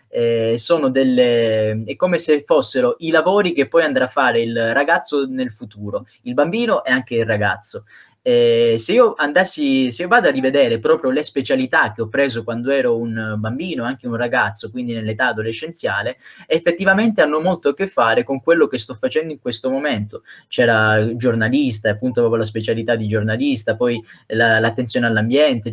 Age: 20-39